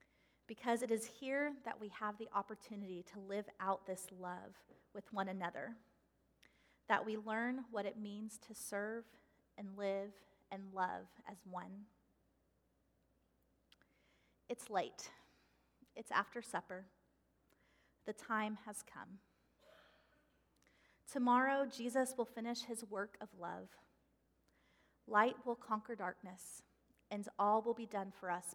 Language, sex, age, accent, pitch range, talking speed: English, female, 30-49, American, 195-235 Hz, 125 wpm